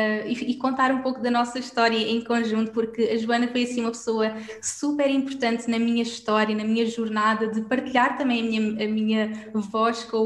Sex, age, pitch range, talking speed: female, 20-39, 220-250 Hz, 195 wpm